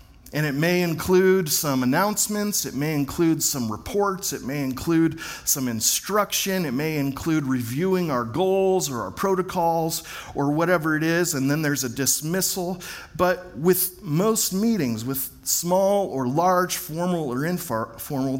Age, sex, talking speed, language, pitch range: 40-59, male, 145 wpm, English, 135-185 Hz